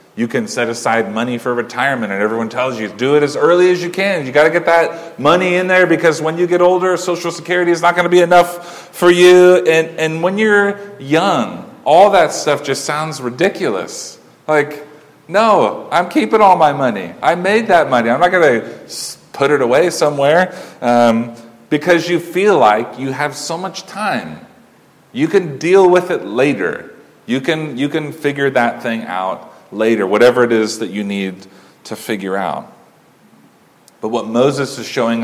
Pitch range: 110-170 Hz